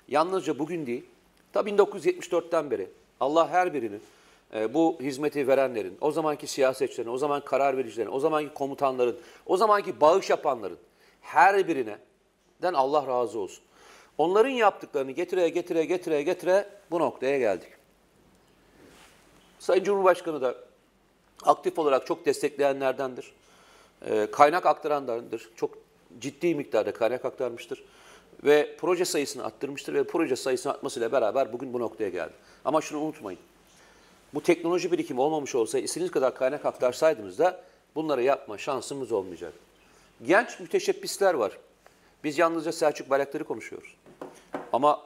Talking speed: 125 wpm